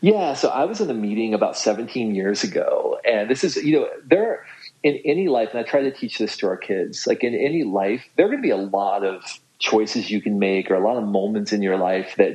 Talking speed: 260 wpm